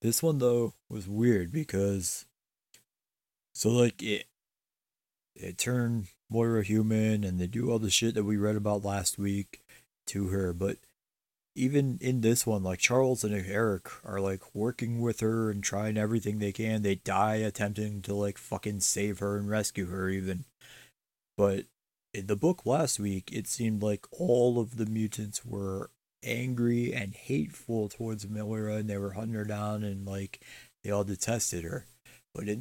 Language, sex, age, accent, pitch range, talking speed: English, male, 30-49, American, 100-115 Hz, 165 wpm